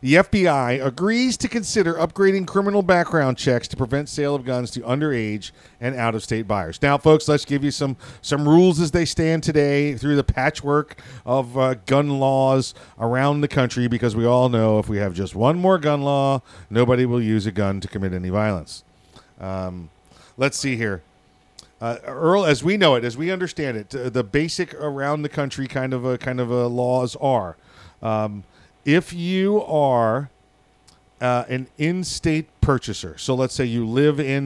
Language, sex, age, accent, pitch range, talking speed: English, male, 40-59, American, 110-145 Hz, 175 wpm